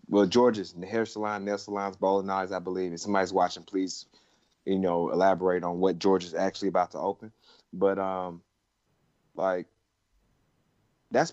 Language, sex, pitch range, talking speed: English, male, 100-130 Hz, 150 wpm